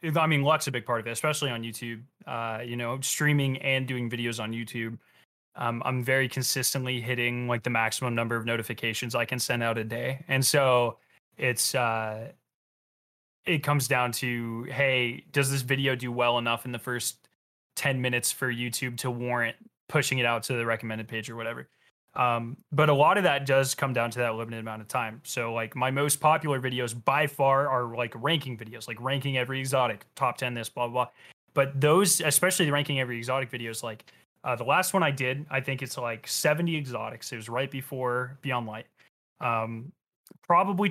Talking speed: 200 wpm